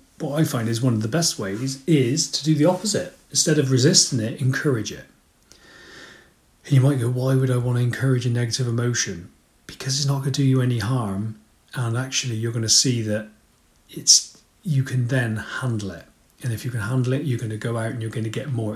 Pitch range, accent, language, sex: 115-140 Hz, British, English, male